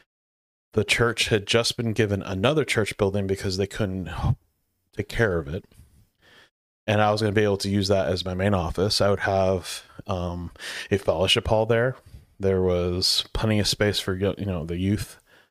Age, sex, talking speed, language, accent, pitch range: 30-49, male, 185 wpm, English, American, 95-110 Hz